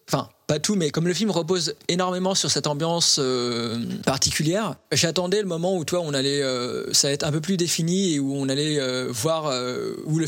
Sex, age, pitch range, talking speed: male, 20-39, 135-170 Hz, 220 wpm